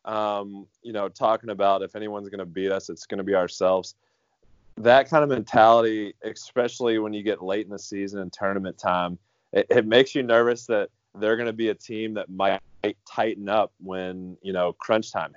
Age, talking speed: 30-49, 190 wpm